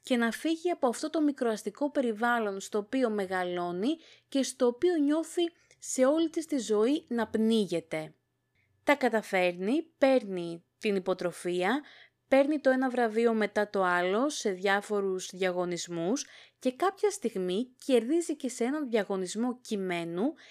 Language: Greek